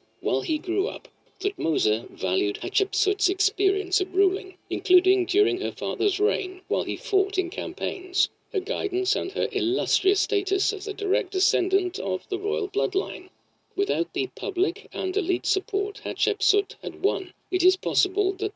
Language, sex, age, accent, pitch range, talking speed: English, male, 50-69, British, 375-405 Hz, 150 wpm